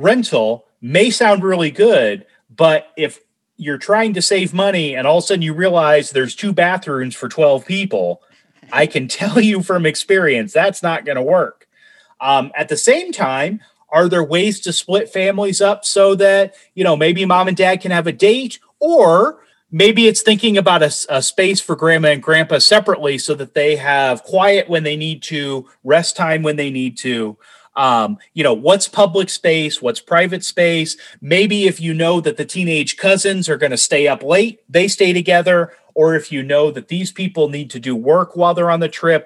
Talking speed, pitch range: 195 wpm, 150-195 Hz